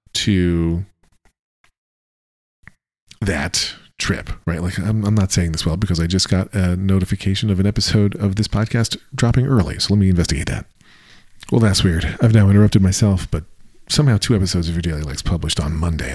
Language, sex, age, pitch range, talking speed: English, male, 40-59, 85-110 Hz, 180 wpm